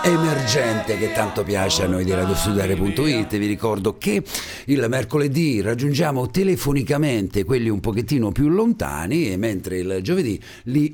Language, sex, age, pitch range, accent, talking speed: Italian, male, 50-69, 95-140 Hz, native, 135 wpm